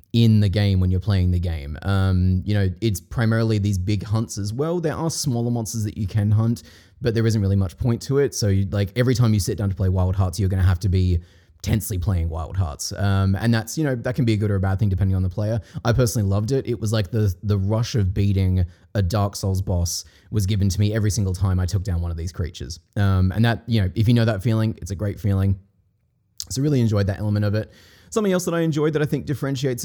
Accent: Australian